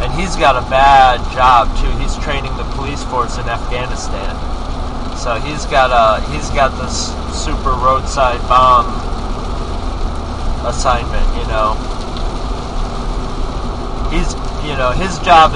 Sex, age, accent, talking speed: male, 30-49, American, 125 wpm